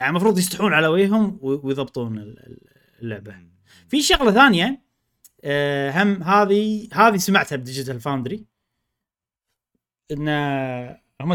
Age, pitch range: 30-49, 125-205 Hz